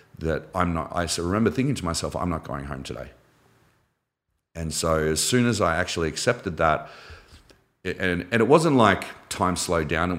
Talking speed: 185 wpm